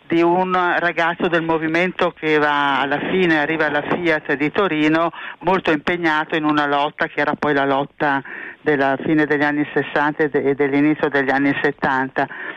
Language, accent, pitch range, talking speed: Italian, native, 155-185 Hz, 160 wpm